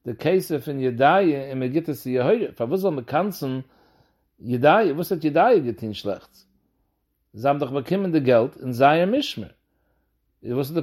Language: English